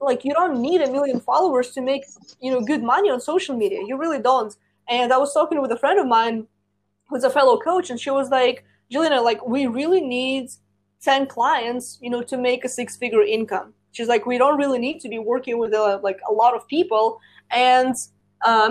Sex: female